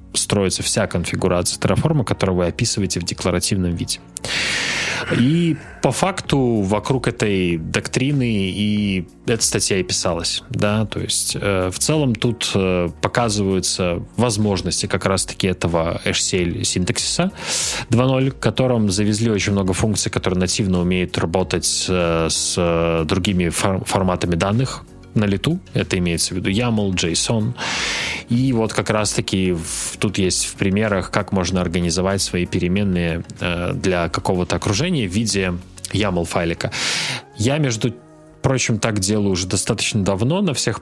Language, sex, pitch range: Russian, male, 90-115 Hz